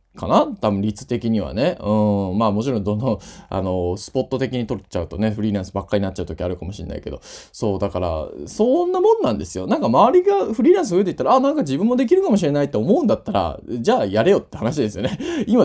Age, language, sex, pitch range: 20-39, Japanese, male, 100-140 Hz